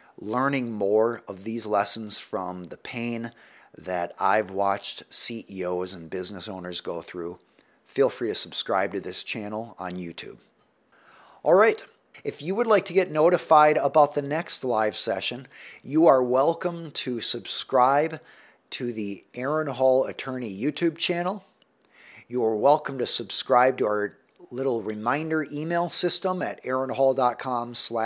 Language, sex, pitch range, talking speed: English, male, 110-150 Hz, 135 wpm